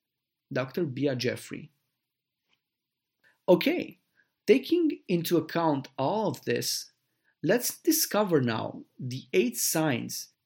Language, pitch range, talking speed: English, 125-165 Hz, 90 wpm